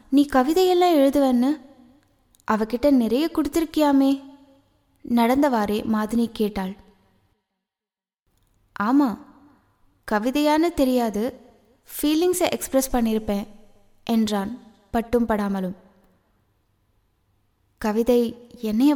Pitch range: 195-255 Hz